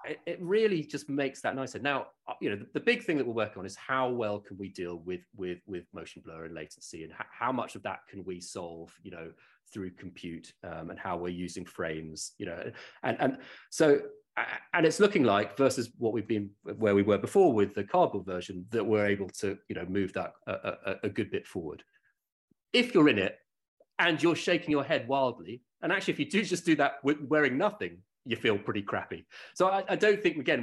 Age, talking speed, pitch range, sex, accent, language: 30-49, 220 wpm, 100-155 Hz, male, British, English